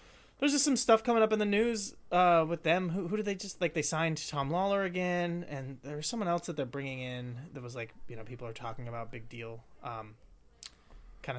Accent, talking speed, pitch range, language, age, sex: American, 225 wpm, 130-190 Hz, English, 30-49, male